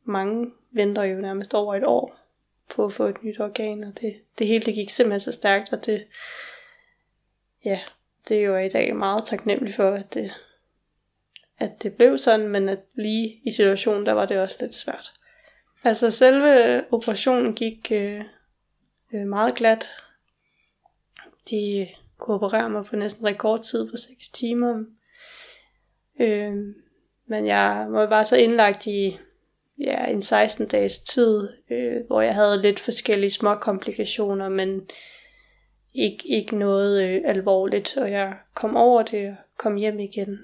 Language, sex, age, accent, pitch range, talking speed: Danish, female, 20-39, native, 200-235 Hz, 155 wpm